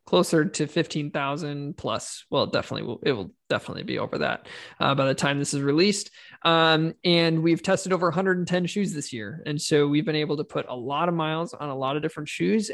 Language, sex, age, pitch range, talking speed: English, male, 20-39, 145-170 Hz, 210 wpm